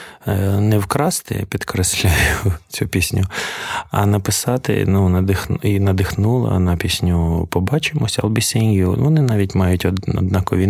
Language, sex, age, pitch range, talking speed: Ukrainian, male, 20-39, 95-105 Hz, 105 wpm